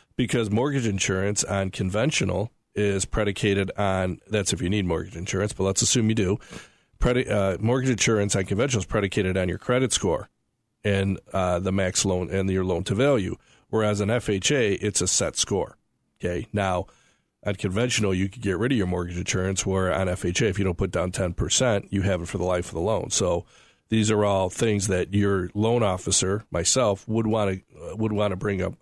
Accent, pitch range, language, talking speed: American, 95-110 Hz, English, 185 wpm